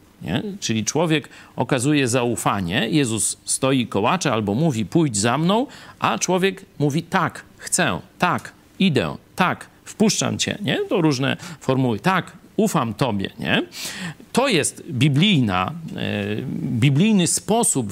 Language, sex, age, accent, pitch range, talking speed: Polish, male, 50-69, native, 125-190 Hz, 120 wpm